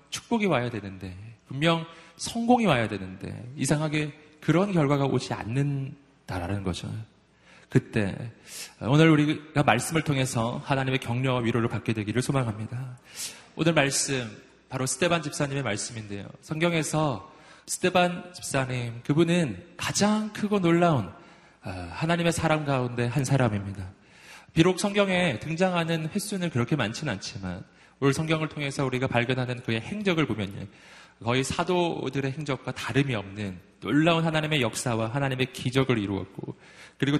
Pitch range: 120-165 Hz